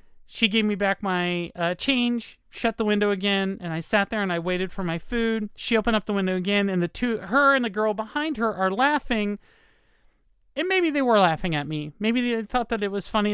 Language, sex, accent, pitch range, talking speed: English, male, American, 185-245 Hz, 235 wpm